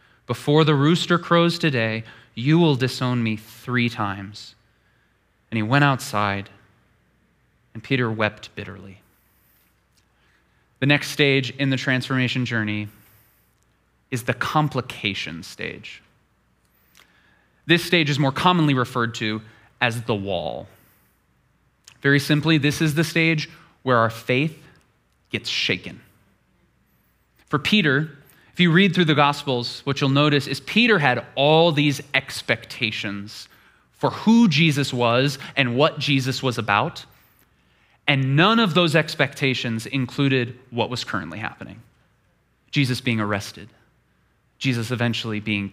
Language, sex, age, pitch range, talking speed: English, male, 20-39, 115-150 Hz, 120 wpm